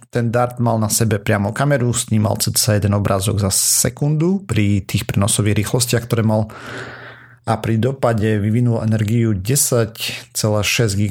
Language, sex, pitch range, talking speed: Slovak, male, 105-125 Hz, 135 wpm